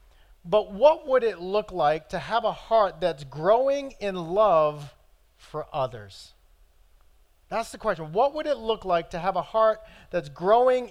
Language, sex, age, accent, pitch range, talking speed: English, male, 40-59, American, 135-195 Hz, 165 wpm